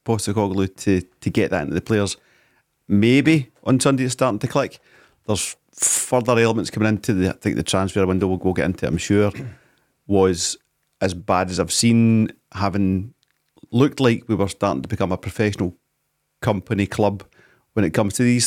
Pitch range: 95-120 Hz